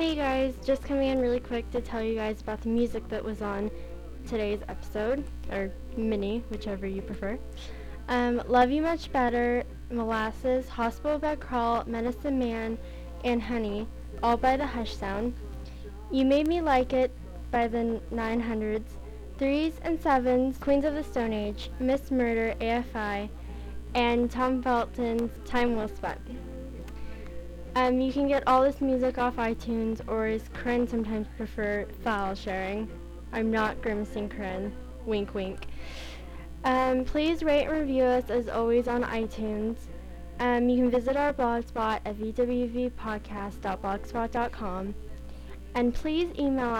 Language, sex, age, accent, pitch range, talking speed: English, female, 10-29, American, 215-255 Hz, 140 wpm